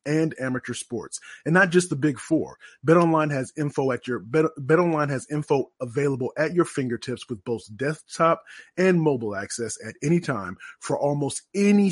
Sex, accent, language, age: male, American, English, 30-49